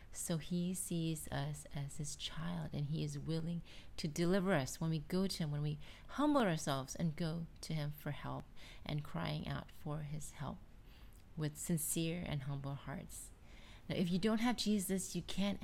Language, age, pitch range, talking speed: English, 30-49, 150-185 Hz, 185 wpm